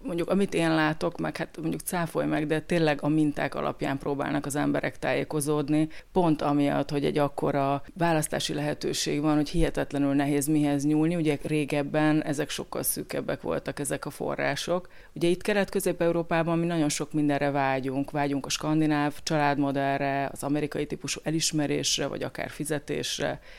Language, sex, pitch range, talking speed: Hungarian, female, 145-170 Hz, 150 wpm